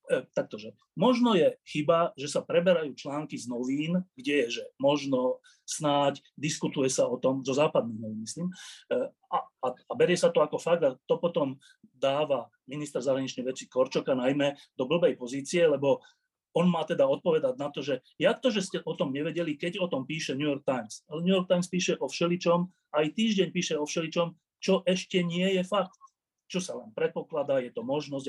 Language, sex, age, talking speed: Slovak, male, 30-49, 185 wpm